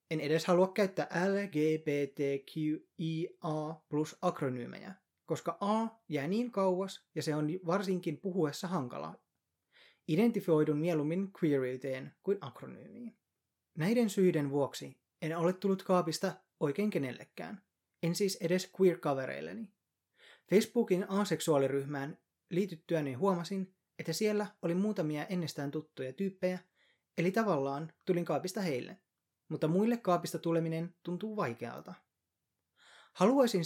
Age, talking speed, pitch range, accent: 20-39, 105 wpm, 155-195 Hz, native